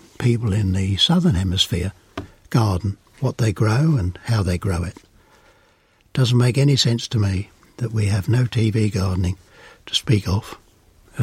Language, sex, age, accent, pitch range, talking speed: English, male, 60-79, British, 100-125 Hz, 155 wpm